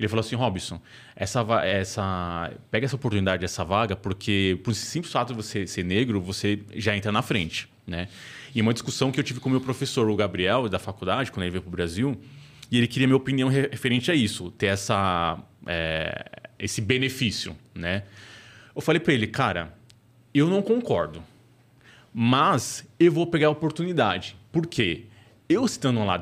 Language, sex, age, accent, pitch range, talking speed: Portuguese, male, 20-39, Brazilian, 100-135 Hz, 180 wpm